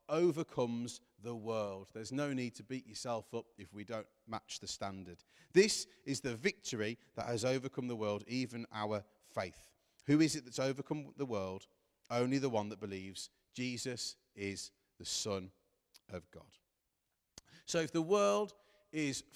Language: English